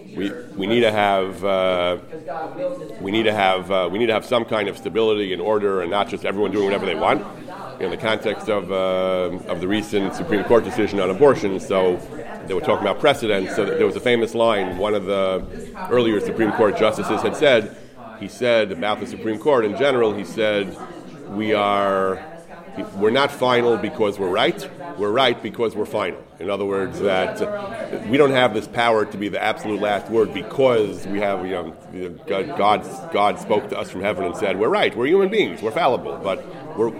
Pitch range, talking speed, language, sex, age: 100-125 Hz, 205 wpm, English, male, 40-59